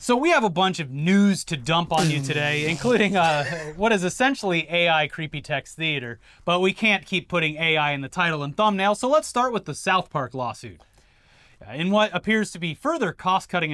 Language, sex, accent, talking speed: English, male, American, 205 wpm